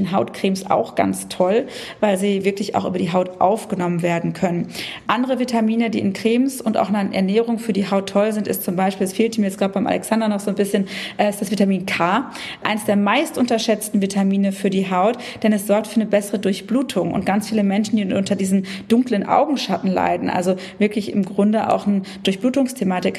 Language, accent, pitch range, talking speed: German, German, 195-235 Hz, 205 wpm